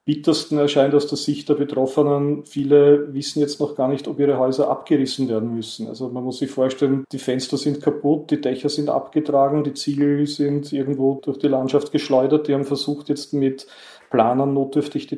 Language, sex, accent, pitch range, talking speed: German, male, Austrian, 130-145 Hz, 190 wpm